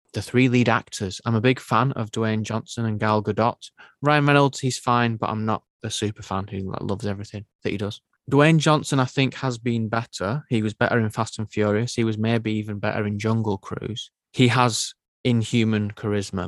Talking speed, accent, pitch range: 205 wpm, British, 105-125 Hz